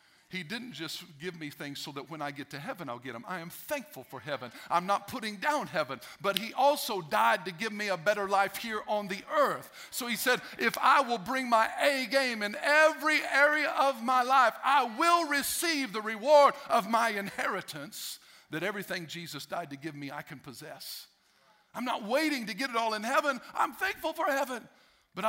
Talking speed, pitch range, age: 210 wpm, 170-235 Hz, 50-69